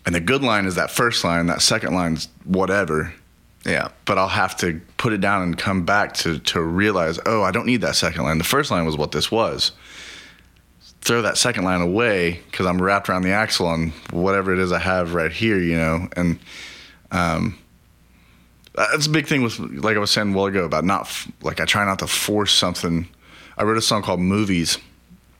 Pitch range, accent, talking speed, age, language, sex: 80-100 Hz, American, 215 wpm, 30-49, English, male